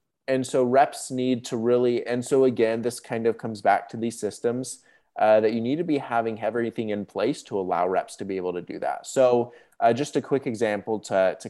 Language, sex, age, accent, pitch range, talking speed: English, male, 20-39, American, 100-125 Hz, 230 wpm